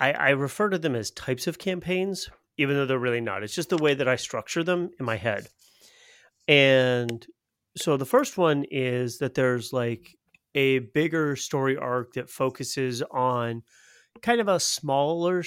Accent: American